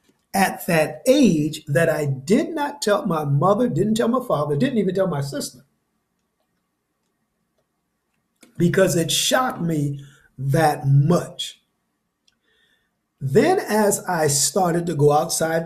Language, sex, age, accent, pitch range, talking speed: English, male, 50-69, American, 145-210 Hz, 125 wpm